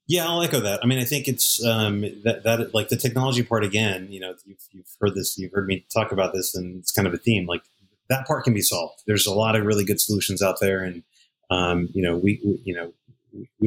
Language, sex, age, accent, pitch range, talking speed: English, male, 30-49, American, 95-115 Hz, 260 wpm